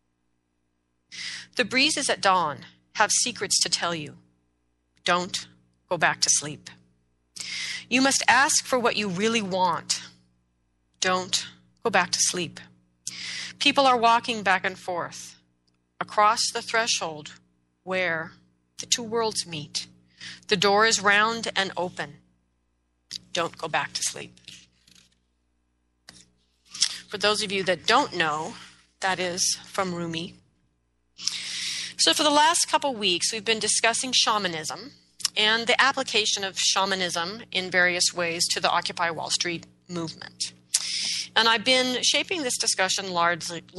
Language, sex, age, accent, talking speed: English, female, 40-59, American, 130 wpm